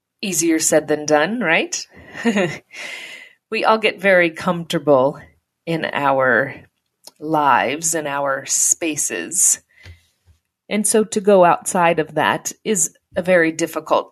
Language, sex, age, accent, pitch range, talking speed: English, female, 40-59, American, 150-195 Hz, 115 wpm